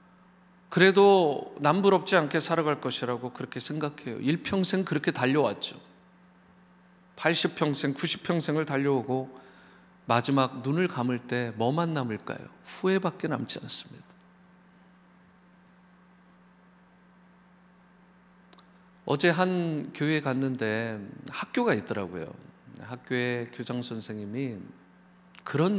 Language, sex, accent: Korean, male, native